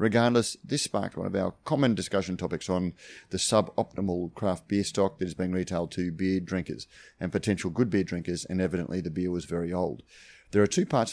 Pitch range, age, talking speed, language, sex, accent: 90-105 Hz, 30-49, 205 wpm, English, male, Australian